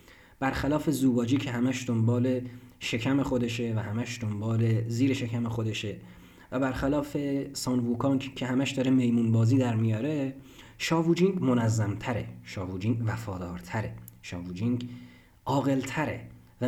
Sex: male